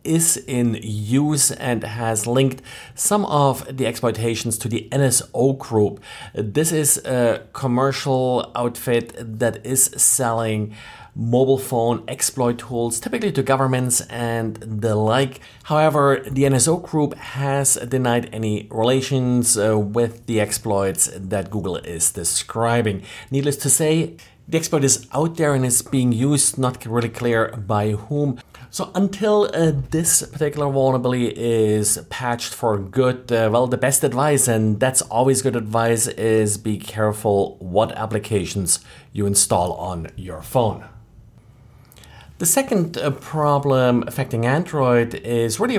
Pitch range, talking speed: 110-135 Hz, 135 wpm